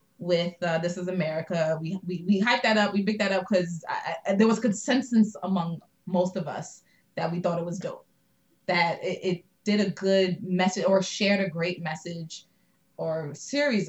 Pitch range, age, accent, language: 170-210 Hz, 20-39, American, English